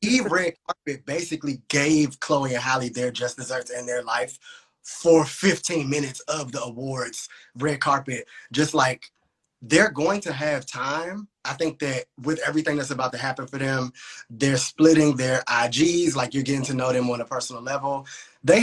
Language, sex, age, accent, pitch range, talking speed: English, male, 20-39, American, 130-160 Hz, 175 wpm